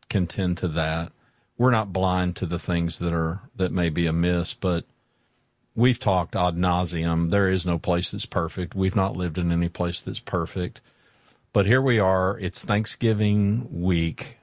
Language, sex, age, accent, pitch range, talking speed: English, male, 50-69, American, 90-115 Hz, 170 wpm